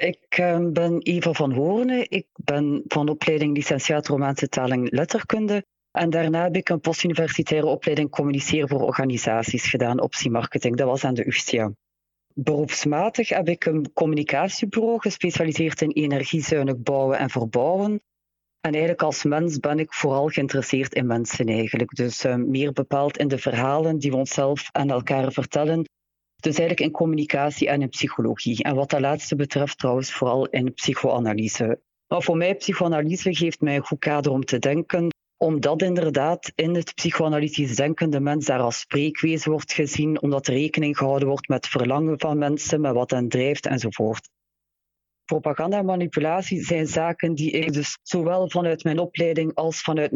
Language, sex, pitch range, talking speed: Dutch, female, 140-165 Hz, 160 wpm